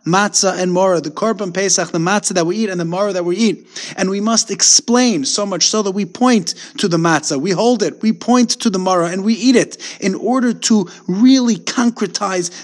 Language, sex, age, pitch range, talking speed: English, male, 30-49, 160-200 Hz, 225 wpm